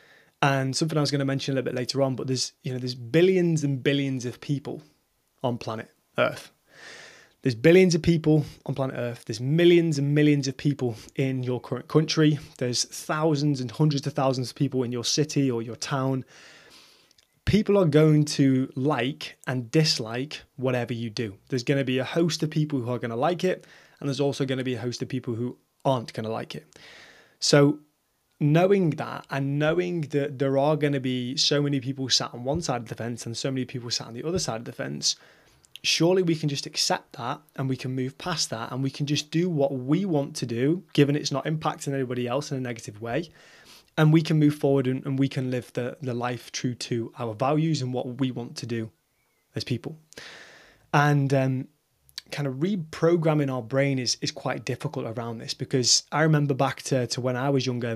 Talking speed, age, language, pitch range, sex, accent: 215 wpm, 20-39, English, 125-150 Hz, male, British